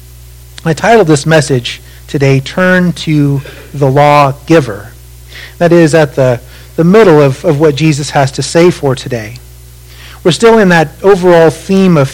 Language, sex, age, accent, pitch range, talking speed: English, male, 40-59, American, 140-175 Hz, 160 wpm